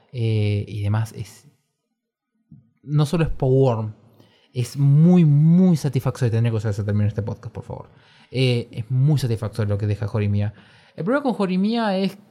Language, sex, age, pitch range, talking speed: Spanish, male, 20-39, 115-145 Hz, 170 wpm